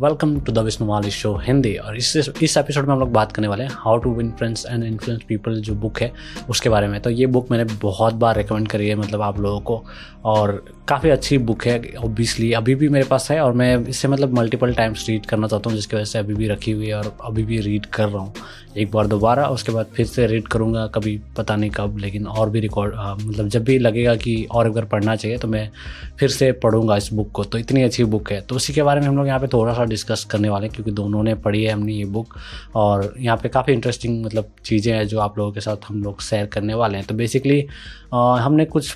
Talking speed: 250 wpm